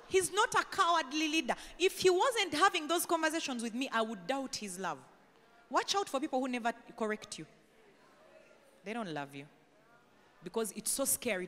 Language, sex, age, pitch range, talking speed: English, female, 30-49, 195-290 Hz, 180 wpm